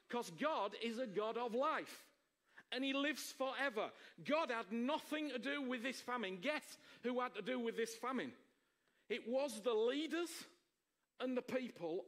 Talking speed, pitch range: 170 wpm, 235-295 Hz